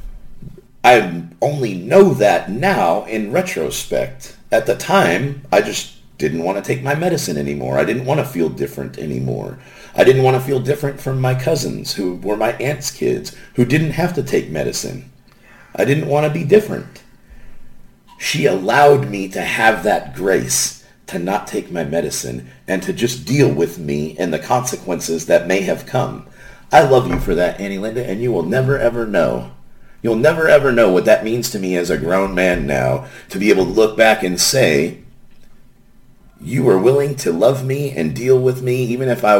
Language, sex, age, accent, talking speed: English, male, 50-69, American, 190 wpm